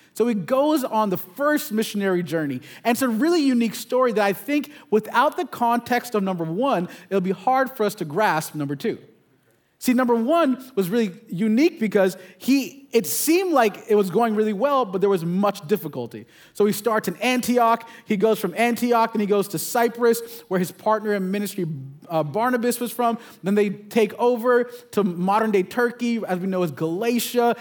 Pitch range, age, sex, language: 195-255 Hz, 30-49, male, English